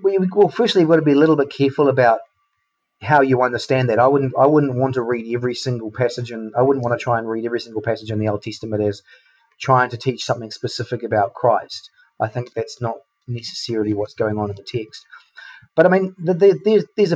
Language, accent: English, Australian